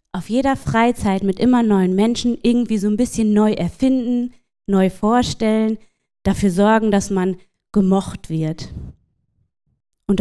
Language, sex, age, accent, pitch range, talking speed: German, female, 20-39, German, 185-235 Hz, 130 wpm